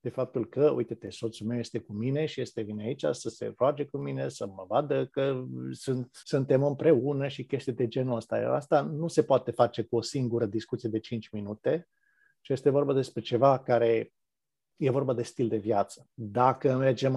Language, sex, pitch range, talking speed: Romanian, male, 115-145 Hz, 200 wpm